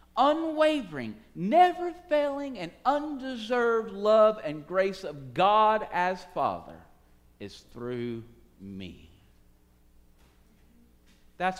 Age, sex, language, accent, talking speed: 50-69, male, English, American, 80 wpm